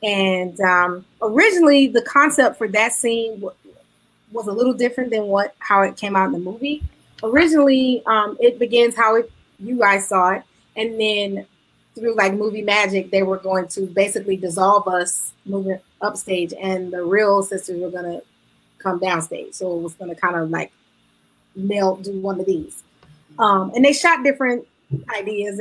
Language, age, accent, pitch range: English, 30-49, American, 190-235 Hz